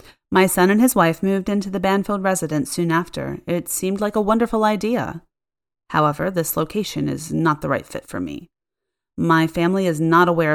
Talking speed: 190 wpm